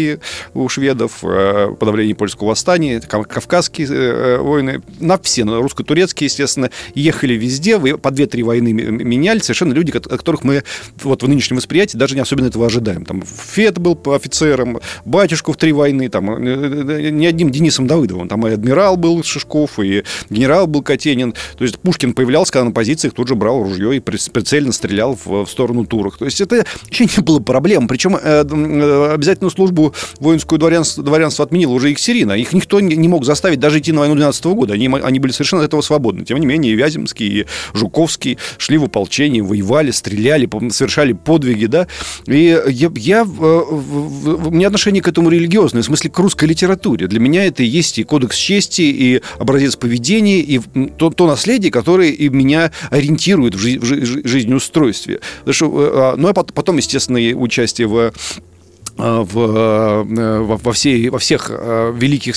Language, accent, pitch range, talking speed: Russian, native, 120-160 Hz, 165 wpm